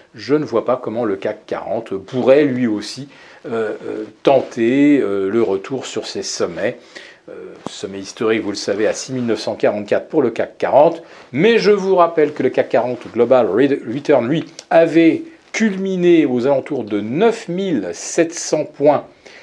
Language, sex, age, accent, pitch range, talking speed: French, male, 50-69, French, 115-195 Hz, 155 wpm